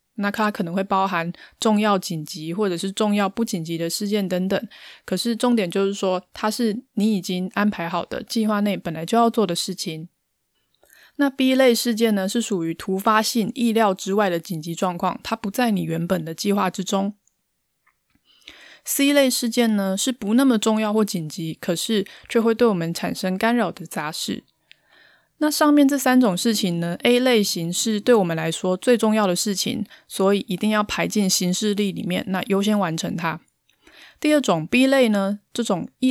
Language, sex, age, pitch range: Chinese, female, 20-39, 185-230 Hz